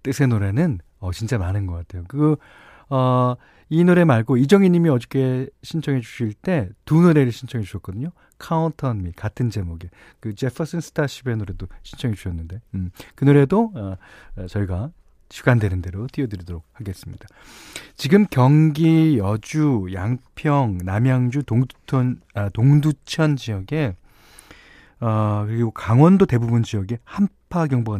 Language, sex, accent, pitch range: Korean, male, native, 105-155 Hz